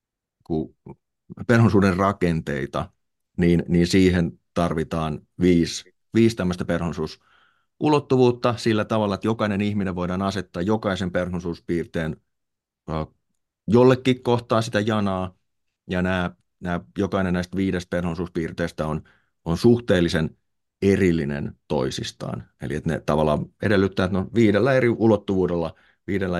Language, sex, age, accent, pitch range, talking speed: Finnish, male, 30-49, native, 85-105 Hz, 105 wpm